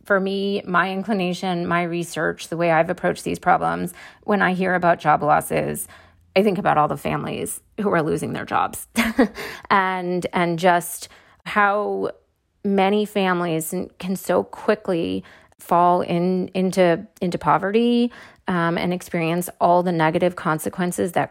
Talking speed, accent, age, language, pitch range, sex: 145 wpm, American, 30-49, English, 175-215 Hz, female